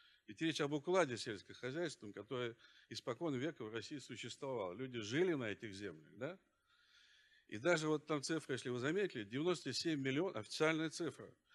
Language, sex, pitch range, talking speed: Russian, male, 125-165 Hz, 150 wpm